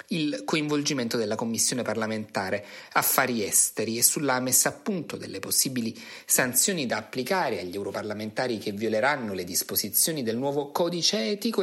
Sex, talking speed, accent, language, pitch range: male, 140 wpm, native, Italian, 110-150 Hz